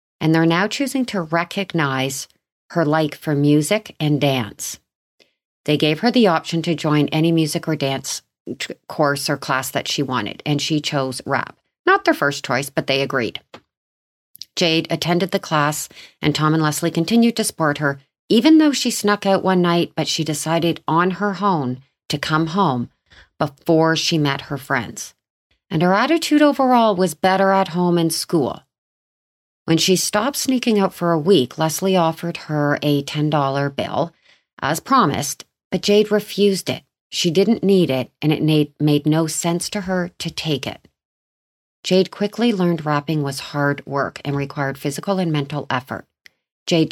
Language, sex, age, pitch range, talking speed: English, female, 40-59, 140-180 Hz, 170 wpm